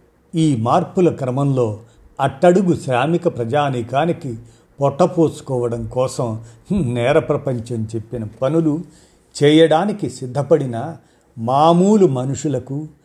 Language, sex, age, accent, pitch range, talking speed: Telugu, male, 50-69, native, 120-155 Hz, 75 wpm